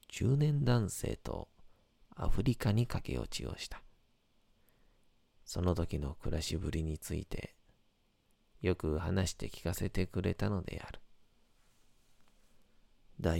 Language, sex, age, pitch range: Japanese, male, 40-59, 80-105 Hz